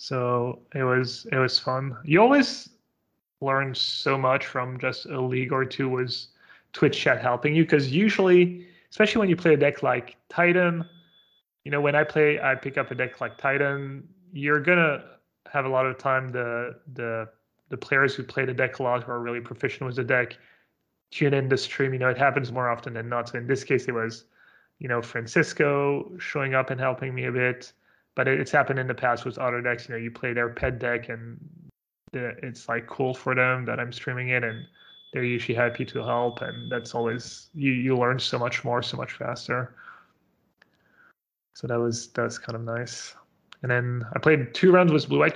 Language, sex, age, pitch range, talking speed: English, male, 20-39, 125-145 Hz, 210 wpm